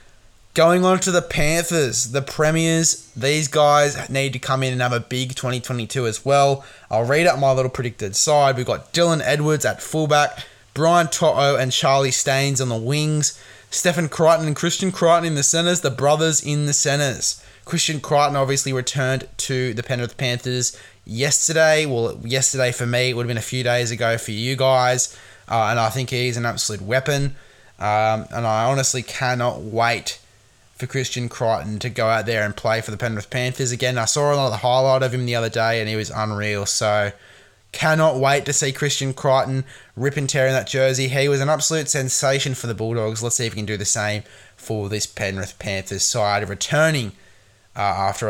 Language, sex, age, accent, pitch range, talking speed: English, male, 20-39, Australian, 115-145 Hz, 195 wpm